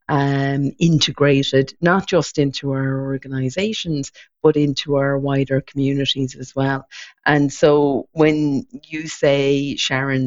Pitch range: 135-155 Hz